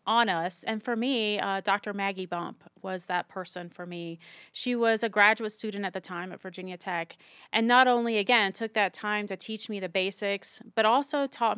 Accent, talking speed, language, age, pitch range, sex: American, 205 wpm, English, 30-49, 195-230 Hz, female